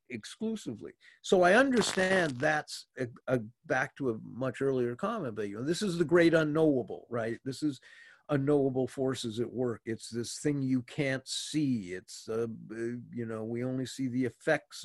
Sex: male